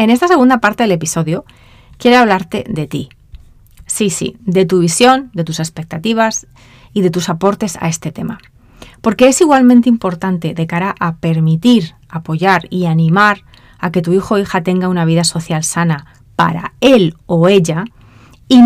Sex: female